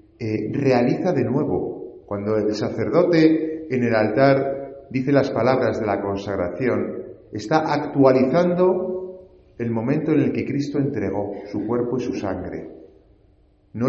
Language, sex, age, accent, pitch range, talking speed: Spanish, male, 40-59, Spanish, 110-145 Hz, 135 wpm